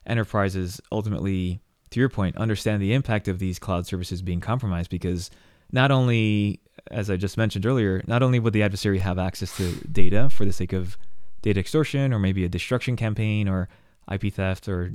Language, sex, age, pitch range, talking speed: English, male, 20-39, 90-110 Hz, 185 wpm